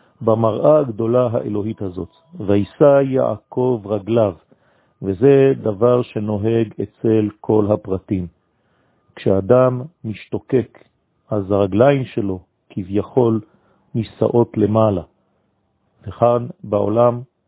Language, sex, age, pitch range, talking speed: French, male, 50-69, 100-120 Hz, 80 wpm